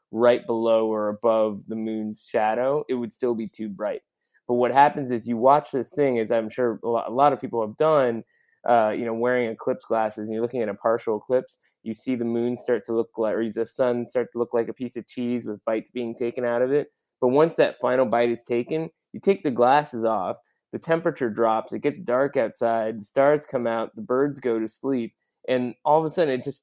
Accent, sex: American, male